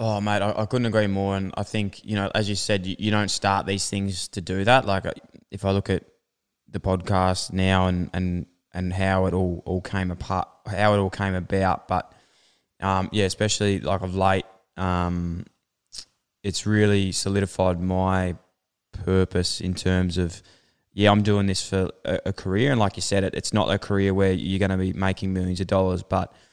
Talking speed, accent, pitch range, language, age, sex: 200 wpm, Australian, 95-100 Hz, English, 20-39, male